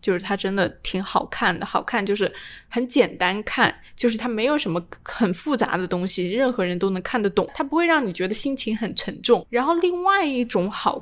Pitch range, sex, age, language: 190-250 Hz, female, 10-29, Chinese